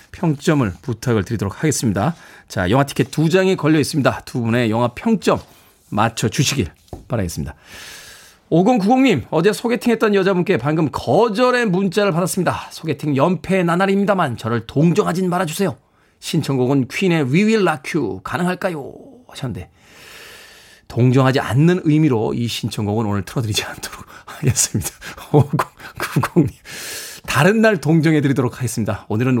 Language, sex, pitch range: Korean, male, 120-185 Hz